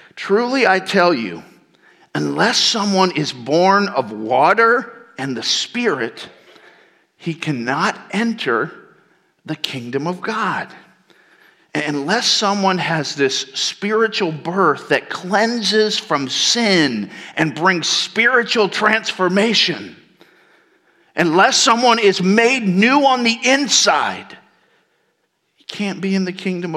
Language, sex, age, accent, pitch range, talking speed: English, male, 50-69, American, 165-225 Hz, 110 wpm